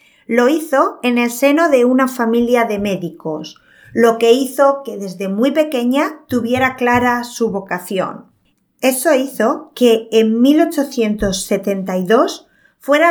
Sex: female